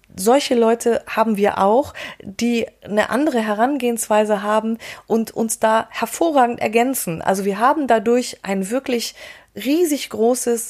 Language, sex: German, female